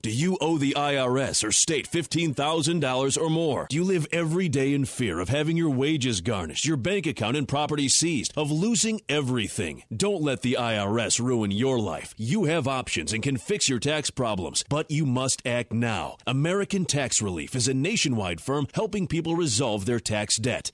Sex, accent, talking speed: male, American, 190 wpm